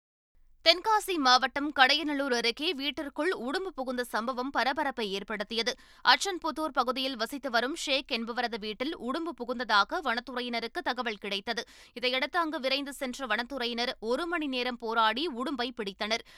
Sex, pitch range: female, 235-305 Hz